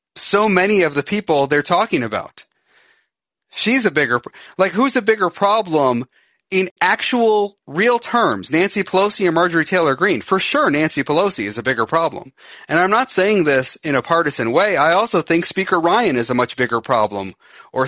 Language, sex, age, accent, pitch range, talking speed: English, male, 30-49, American, 130-190 Hz, 180 wpm